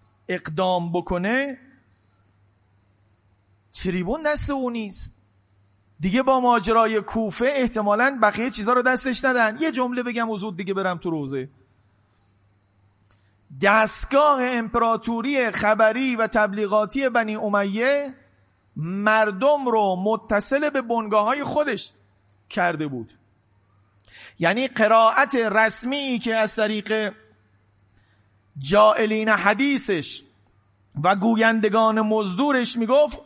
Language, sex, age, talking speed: Persian, male, 40-59, 90 wpm